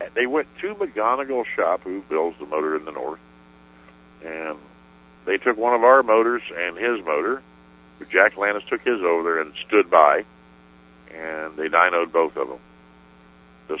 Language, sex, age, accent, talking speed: English, male, 60-79, American, 165 wpm